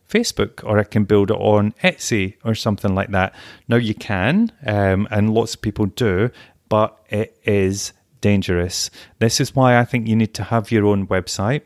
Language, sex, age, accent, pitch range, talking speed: English, male, 30-49, British, 100-125 Hz, 190 wpm